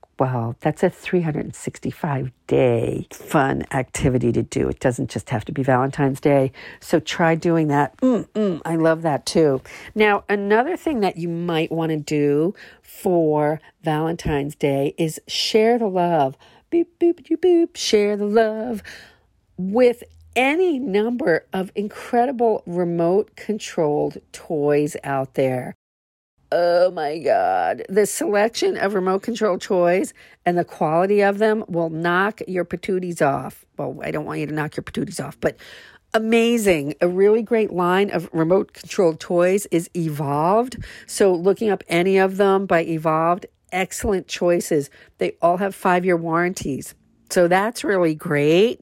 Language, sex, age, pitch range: English, female, 50-69, 155-205 Hz